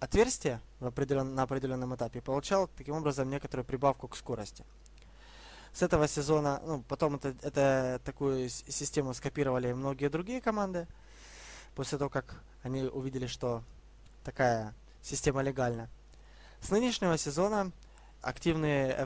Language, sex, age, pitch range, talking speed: Russian, male, 20-39, 130-160 Hz, 115 wpm